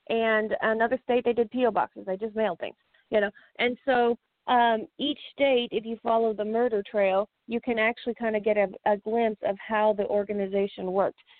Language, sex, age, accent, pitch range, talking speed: English, female, 40-59, American, 200-230 Hz, 200 wpm